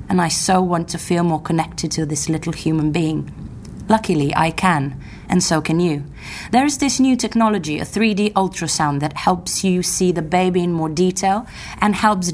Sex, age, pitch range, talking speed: female, 30-49, 160-190 Hz, 190 wpm